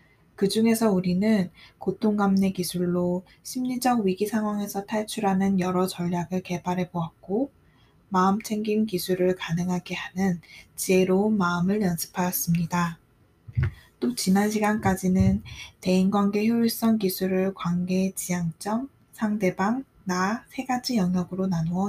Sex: female